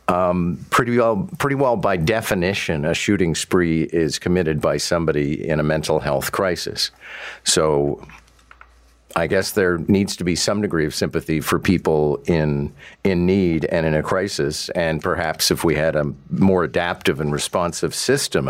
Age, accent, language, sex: 50-69, American, English, male